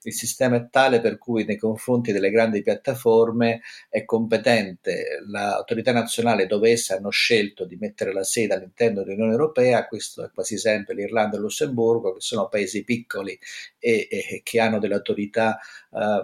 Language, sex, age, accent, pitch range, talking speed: Italian, male, 50-69, native, 105-130 Hz, 165 wpm